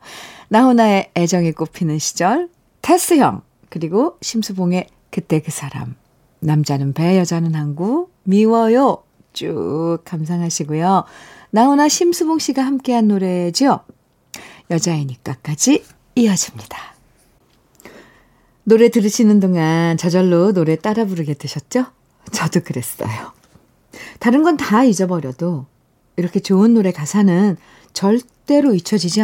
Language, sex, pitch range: Korean, female, 165-245 Hz